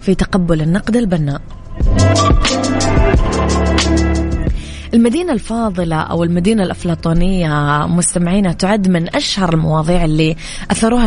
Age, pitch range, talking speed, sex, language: 20-39, 155-195 Hz, 85 wpm, female, English